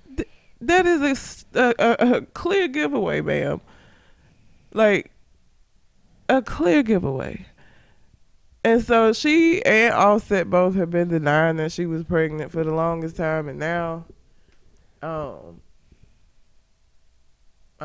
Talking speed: 110 wpm